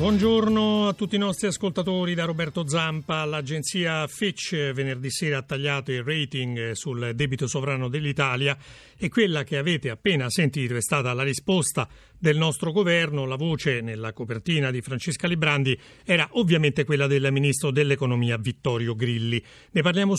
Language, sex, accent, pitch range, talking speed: Italian, male, native, 135-175 Hz, 150 wpm